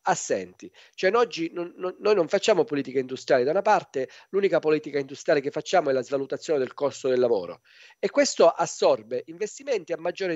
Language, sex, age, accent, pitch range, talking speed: Italian, male, 40-59, native, 130-215 Hz, 185 wpm